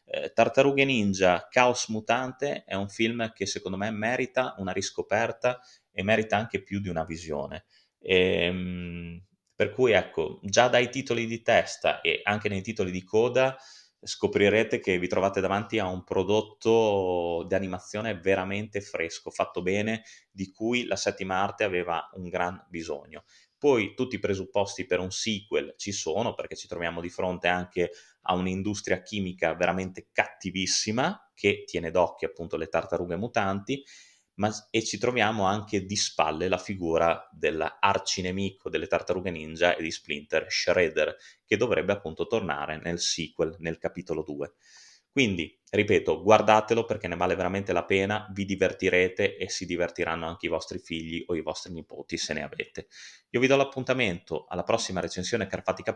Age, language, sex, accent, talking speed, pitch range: 20-39, Italian, male, native, 155 wpm, 90-115 Hz